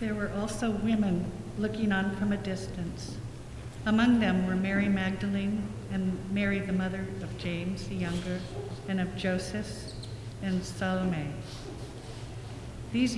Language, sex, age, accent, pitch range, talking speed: English, female, 60-79, American, 135-200 Hz, 125 wpm